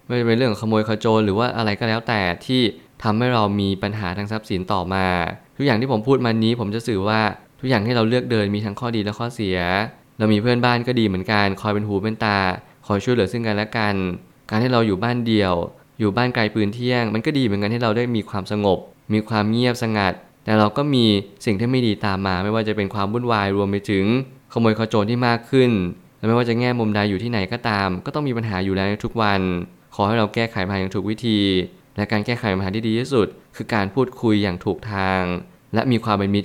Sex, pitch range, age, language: male, 100-120 Hz, 20-39, Thai